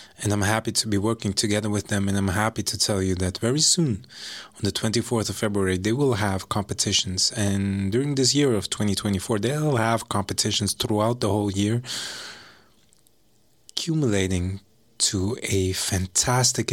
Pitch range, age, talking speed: 95-110 Hz, 20-39, 160 wpm